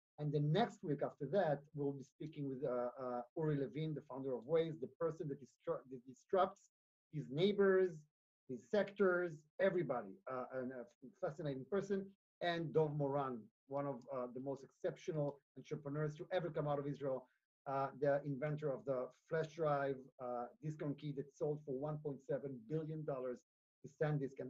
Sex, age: male, 40-59